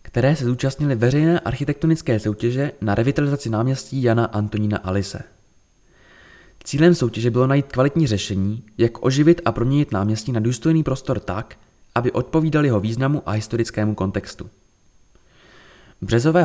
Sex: male